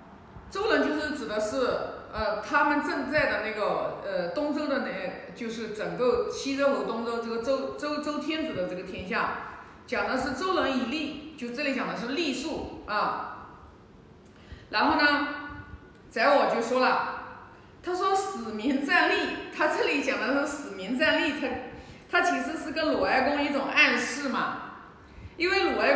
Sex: female